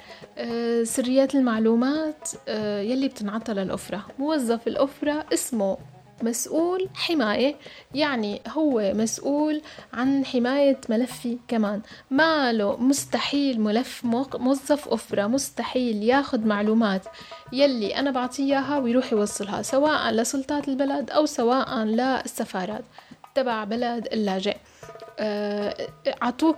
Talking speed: 95 wpm